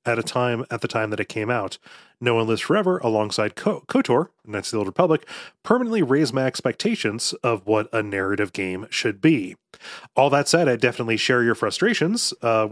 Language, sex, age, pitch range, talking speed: English, male, 30-49, 110-140 Hz, 195 wpm